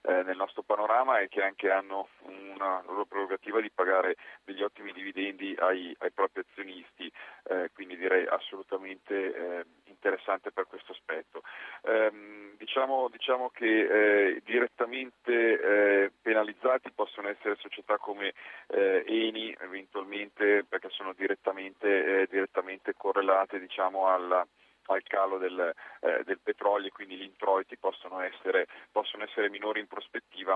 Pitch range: 95-110 Hz